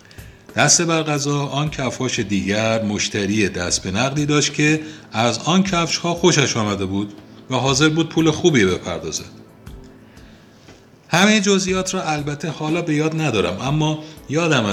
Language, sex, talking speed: Persian, male, 145 wpm